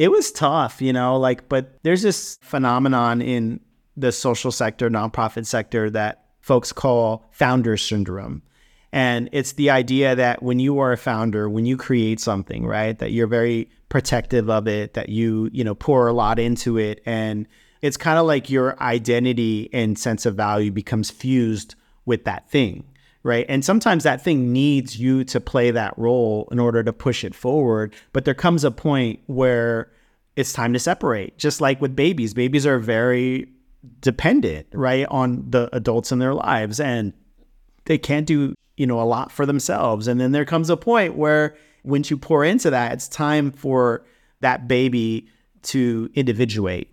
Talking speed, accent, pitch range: 175 wpm, American, 115-135 Hz